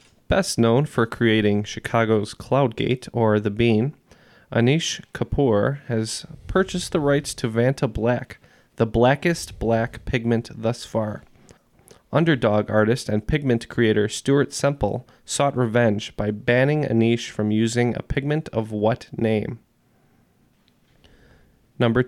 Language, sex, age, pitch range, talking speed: English, male, 20-39, 110-130 Hz, 120 wpm